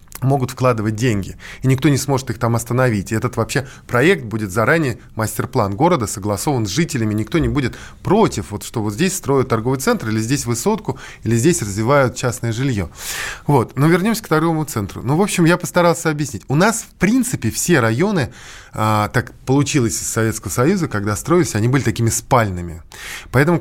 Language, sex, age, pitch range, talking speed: Russian, male, 20-39, 110-150 Hz, 180 wpm